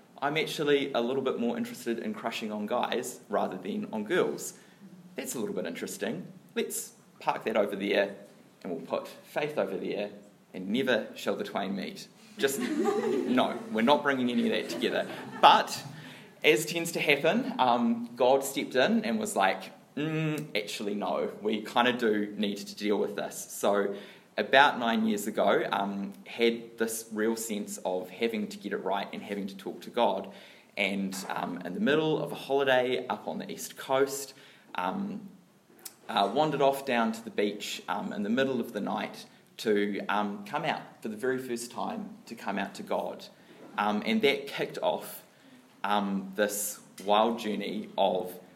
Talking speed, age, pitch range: 180 wpm, 20-39, 105-155 Hz